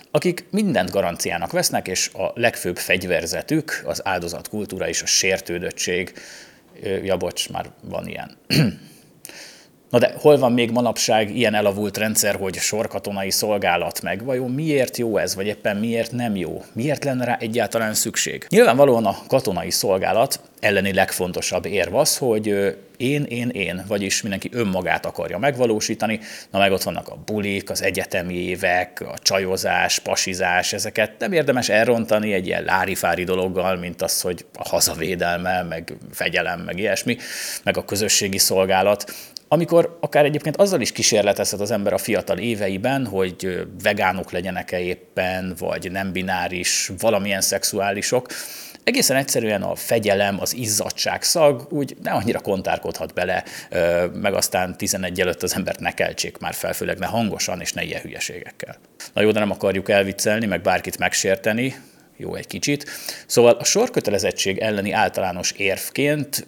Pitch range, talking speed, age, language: 95-120 Hz, 145 wpm, 30-49, Hungarian